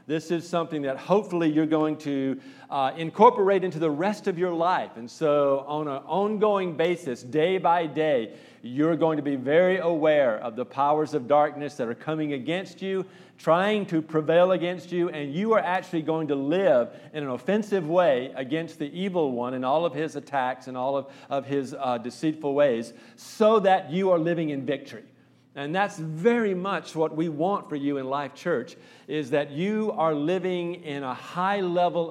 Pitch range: 145-180 Hz